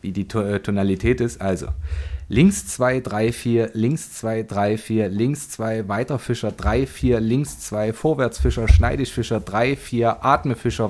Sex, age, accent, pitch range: male, 30-49, German, 110-140 Hz